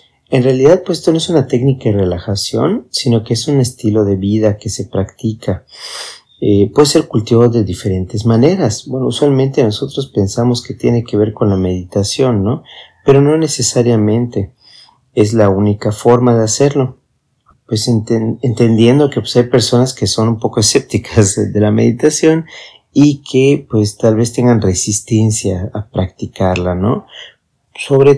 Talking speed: 155 wpm